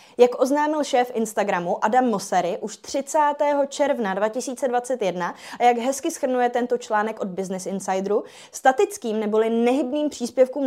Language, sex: Czech, female